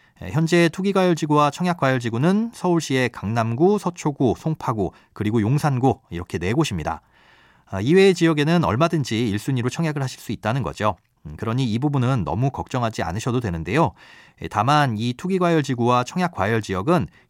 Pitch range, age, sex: 110-170 Hz, 40-59, male